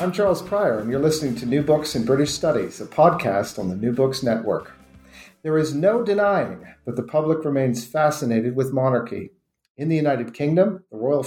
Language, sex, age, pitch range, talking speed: English, male, 50-69, 115-155 Hz, 190 wpm